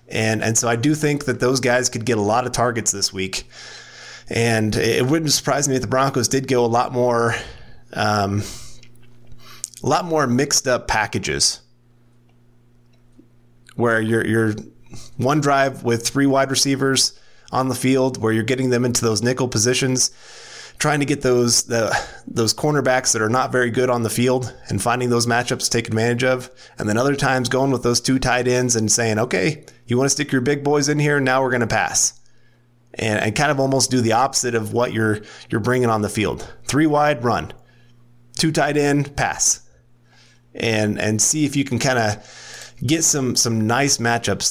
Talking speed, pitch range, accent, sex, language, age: 195 wpm, 115-130 Hz, American, male, English, 30-49